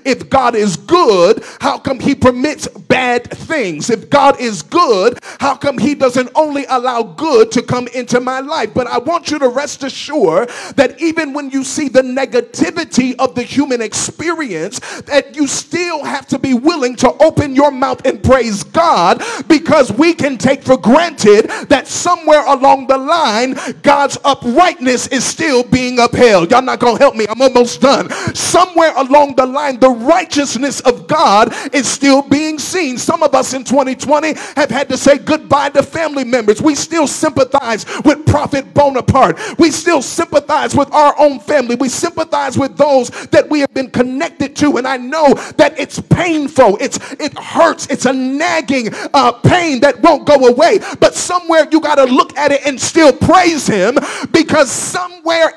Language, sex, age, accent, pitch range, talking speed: English, male, 40-59, American, 260-315 Hz, 175 wpm